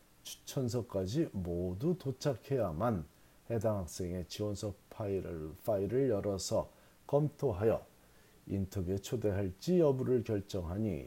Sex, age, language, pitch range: male, 40-59, Korean, 90-125 Hz